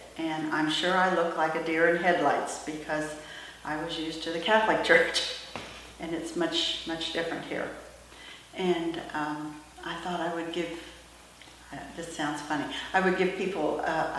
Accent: American